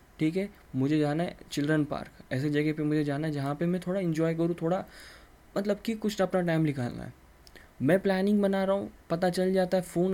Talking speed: 220 wpm